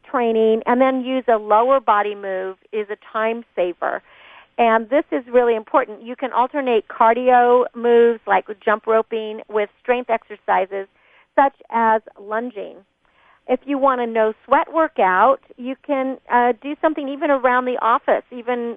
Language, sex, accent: English, female, American